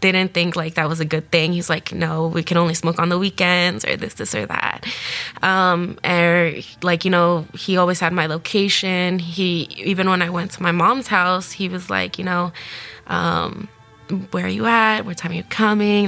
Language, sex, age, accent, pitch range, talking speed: English, female, 20-39, American, 170-190 Hz, 215 wpm